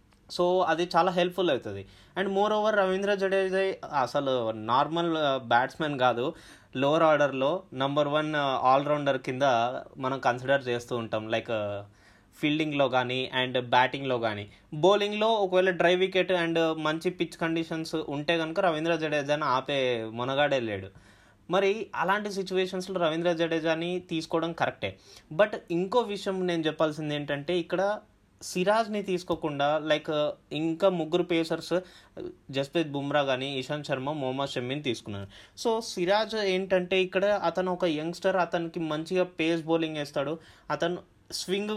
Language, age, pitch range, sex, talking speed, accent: Telugu, 20-39, 135-180 Hz, male, 125 wpm, native